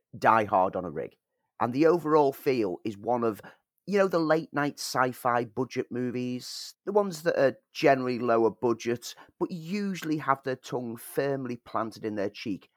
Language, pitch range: English, 115-160 Hz